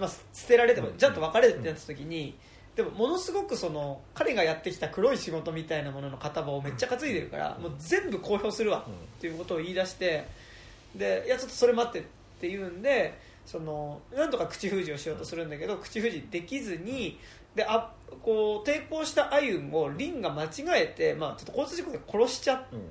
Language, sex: Japanese, male